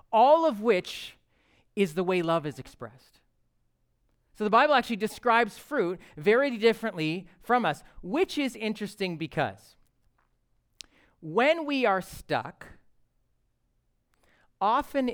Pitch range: 160-235 Hz